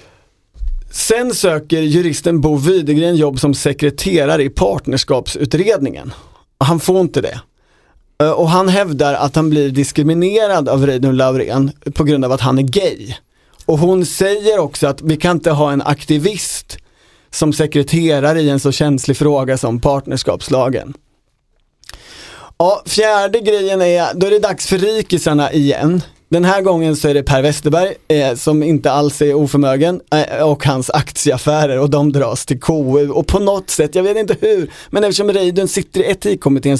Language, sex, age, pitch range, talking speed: Swedish, male, 40-59, 145-180 Hz, 160 wpm